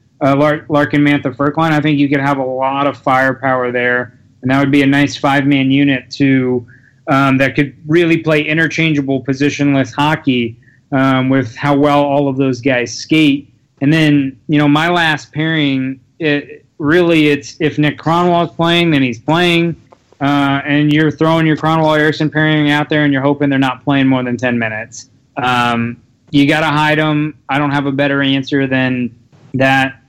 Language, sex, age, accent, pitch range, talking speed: English, male, 20-39, American, 130-150 Hz, 180 wpm